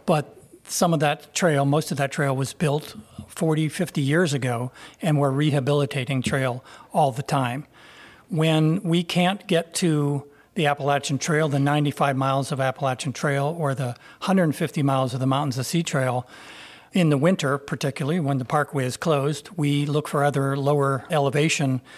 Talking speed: 165 wpm